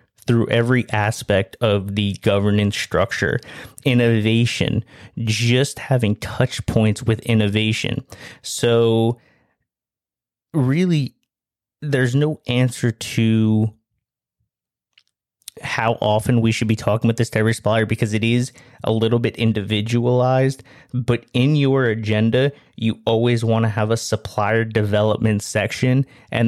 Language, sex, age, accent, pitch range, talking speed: English, male, 30-49, American, 110-125 Hz, 120 wpm